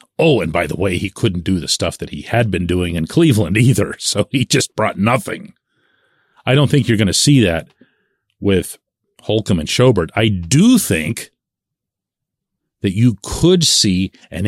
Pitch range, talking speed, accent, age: 95-135 Hz, 180 wpm, American, 40-59